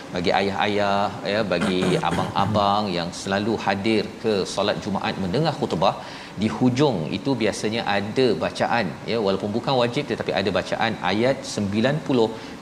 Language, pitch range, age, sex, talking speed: Malayalam, 95-120 Hz, 40-59, male, 135 wpm